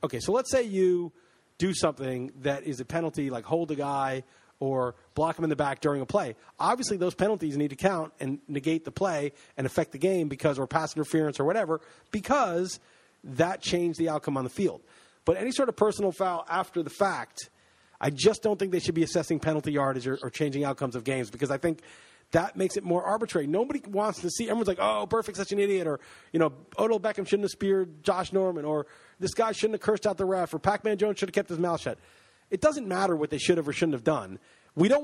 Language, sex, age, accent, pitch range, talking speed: English, male, 40-59, American, 155-205 Hz, 240 wpm